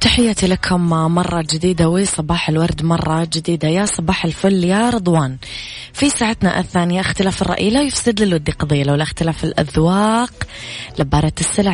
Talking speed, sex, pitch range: 145 wpm, female, 155-190 Hz